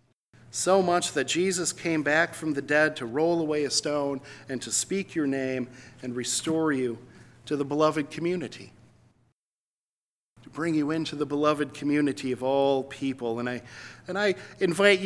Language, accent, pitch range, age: English, American, 130-180 Hz, 50-69